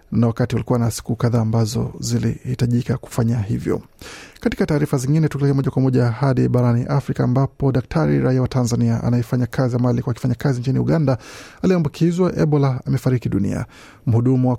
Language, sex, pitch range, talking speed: Swahili, male, 120-140 Hz, 160 wpm